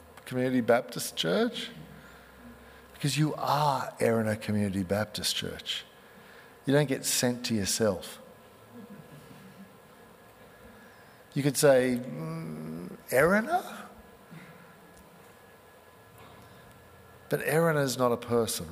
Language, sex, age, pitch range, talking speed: English, male, 50-69, 110-135 Hz, 85 wpm